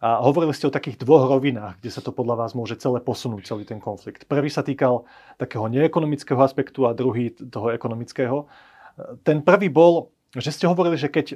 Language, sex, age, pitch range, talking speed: Slovak, male, 30-49, 115-135 Hz, 190 wpm